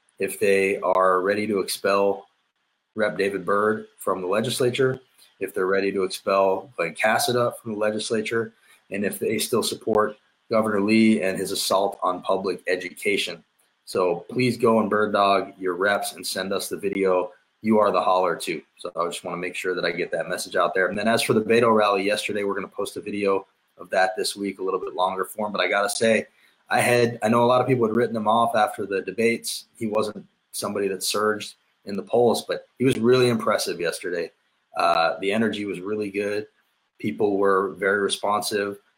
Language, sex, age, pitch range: English, male, 20-39, 95-115 Hz